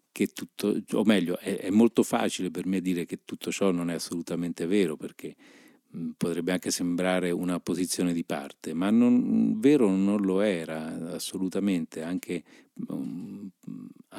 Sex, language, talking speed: male, Italian, 150 wpm